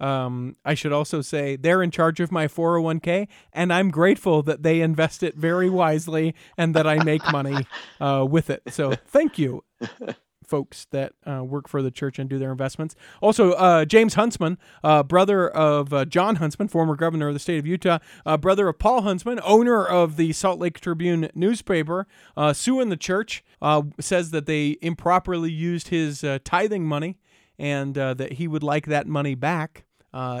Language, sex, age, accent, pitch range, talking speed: English, male, 40-59, American, 135-165 Hz, 185 wpm